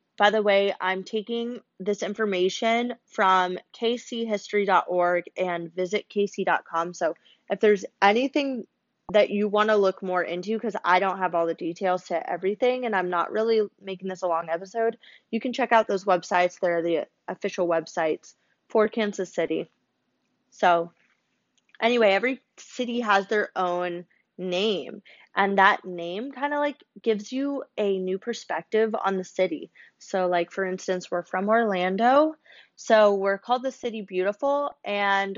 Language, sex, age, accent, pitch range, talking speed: English, female, 20-39, American, 185-230 Hz, 155 wpm